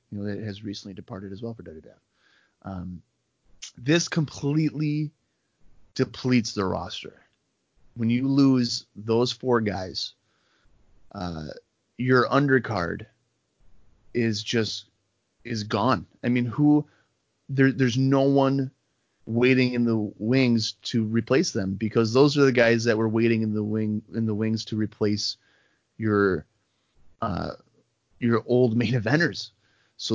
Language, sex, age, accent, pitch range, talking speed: English, male, 30-49, American, 105-130 Hz, 135 wpm